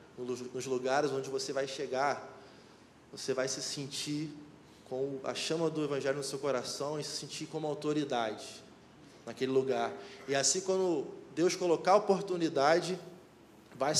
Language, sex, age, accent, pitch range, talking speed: Portuguese, male, 20-39, Brazilian, 125-155 Hz, 140 wpm